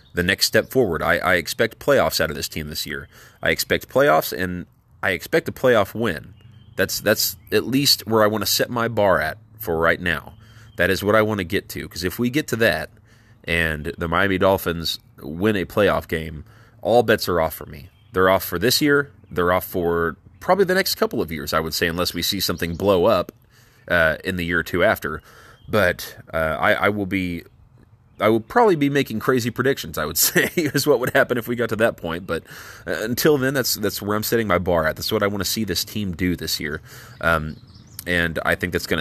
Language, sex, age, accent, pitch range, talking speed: English, male, 30-49, American, 85-115 Hz, 230 wpm